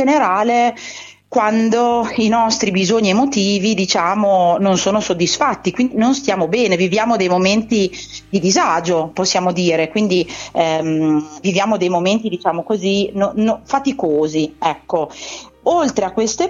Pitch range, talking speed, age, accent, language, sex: 180-235 Hz, 125 wpm, 30-49, native, Italian, female